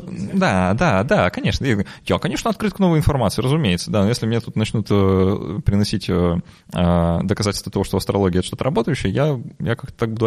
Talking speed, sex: 175 wpm, male